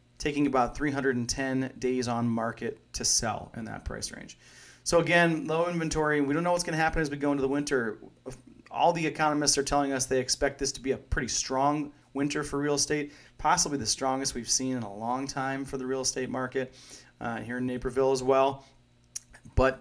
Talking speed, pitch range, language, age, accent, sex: 205 wpm, 125-145 Hz, English, 30-49, American, male